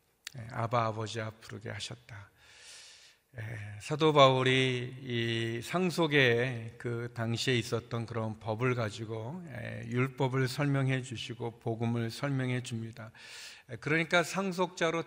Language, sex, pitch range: Korean, male, 120-170 Hz